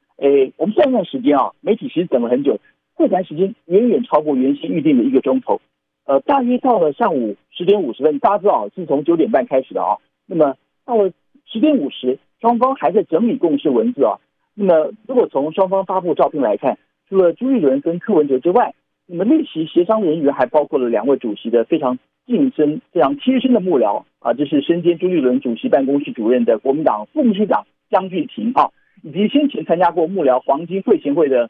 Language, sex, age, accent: Chinese, male, 50-69, native